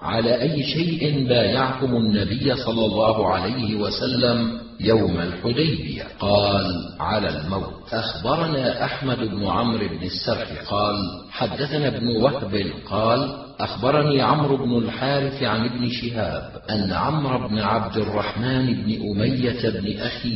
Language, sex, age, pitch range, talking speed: Arabic, male, 50-69, 105-125 Hz, 120 wpm